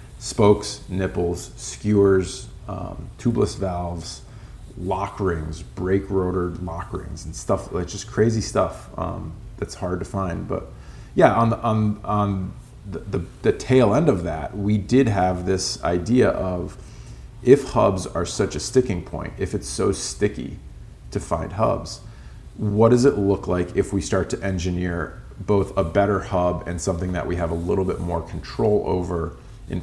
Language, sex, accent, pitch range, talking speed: English, male, American, 90-105 Hz, 165 wpm